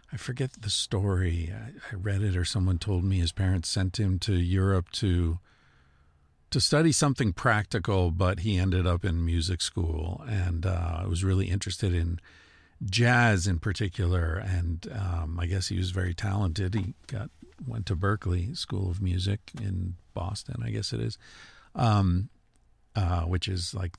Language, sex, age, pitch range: English, male, 50-69, 90-105 Hz